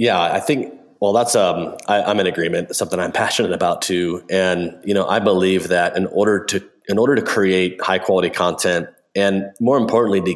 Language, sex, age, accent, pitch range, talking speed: English, male, 30-49, American, 90-115 Hz, 210 wpm